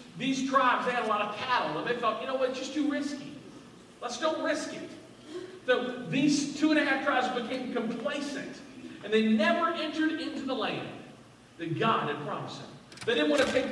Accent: American